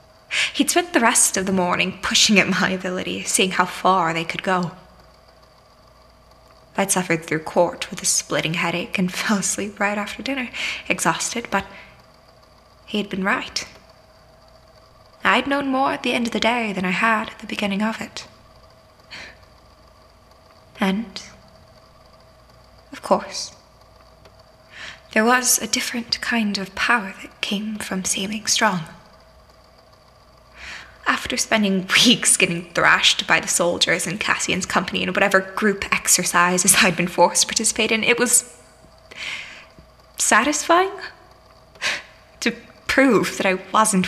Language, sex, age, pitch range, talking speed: English, female, 20-39, 165-225 Hz, 135 wpm